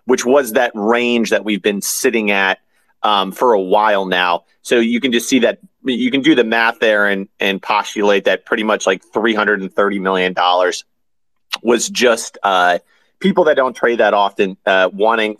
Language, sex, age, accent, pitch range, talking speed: English, male, 30-49, American, 100-130 Hz, 195 wpm